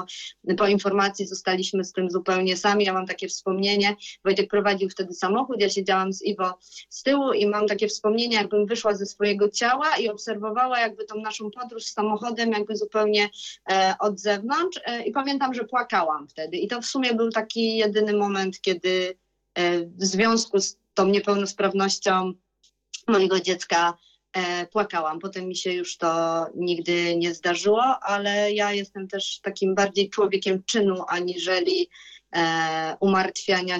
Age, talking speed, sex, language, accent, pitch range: 30-49, 150 wpm, female, Polish, native, 185-210 Hz